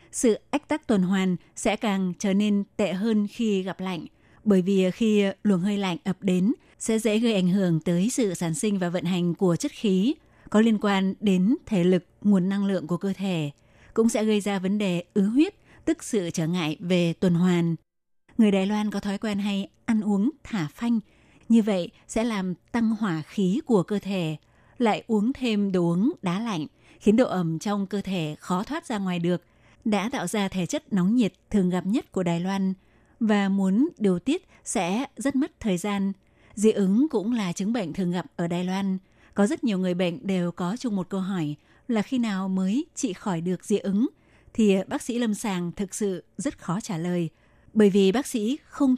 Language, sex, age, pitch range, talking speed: Vietnamese, female, 20-39, 180-220 Hz, 210 wpm